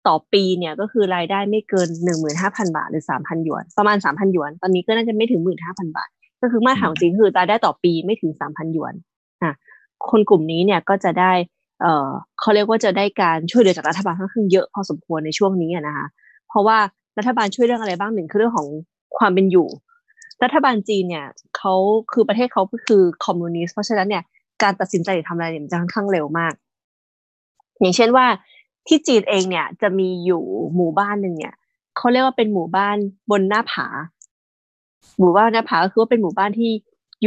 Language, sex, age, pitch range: Thai, female, 20-39, 170-215 Hz